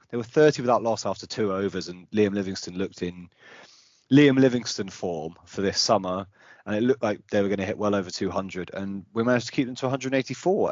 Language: English